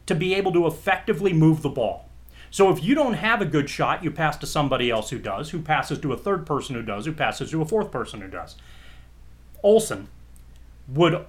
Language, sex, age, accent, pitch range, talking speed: English, male, 30-49, American, 120-175 Hz, 220 wpm